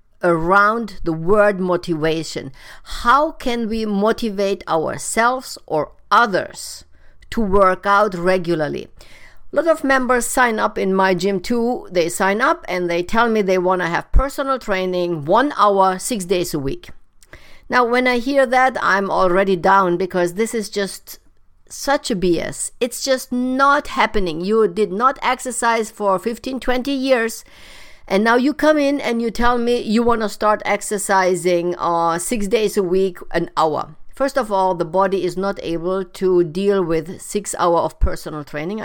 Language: English